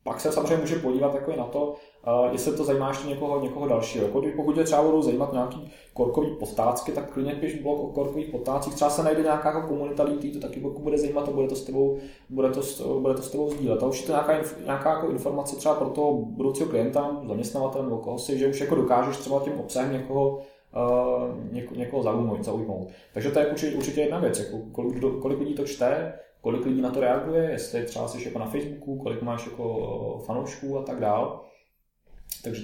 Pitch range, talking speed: 125-150 Hz, 195 wpm